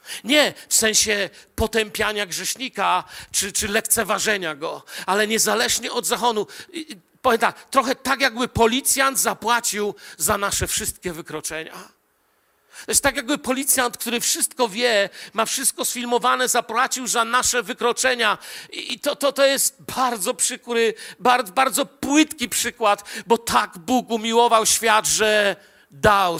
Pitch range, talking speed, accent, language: 215-260 Hz, 125 wpm, native, Polish